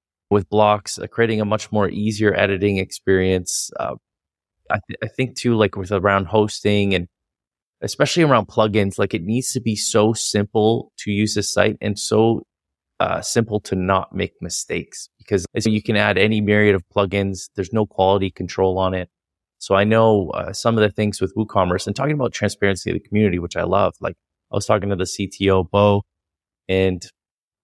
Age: 20-39